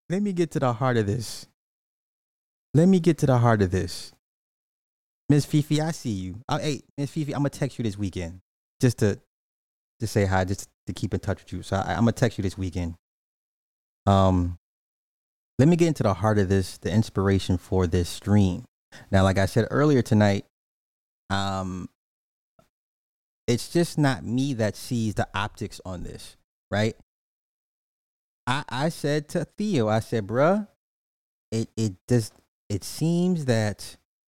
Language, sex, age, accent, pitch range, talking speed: English, male, 20-39, American, 95-125 Hz, 175 wpm